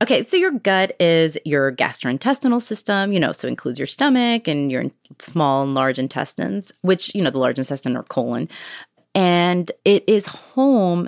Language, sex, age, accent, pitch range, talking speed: English, female, 30-49, American, 140-190 Hz, 180 wpm